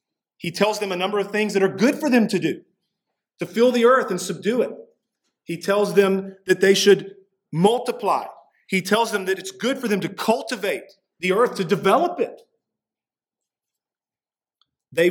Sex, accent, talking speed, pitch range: male, American, 175 wpm, 165-210 Hz